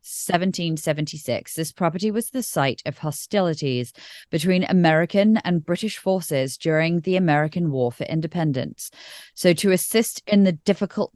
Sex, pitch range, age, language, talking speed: female, 140-185 Hz, 30-49, English, 135 wpm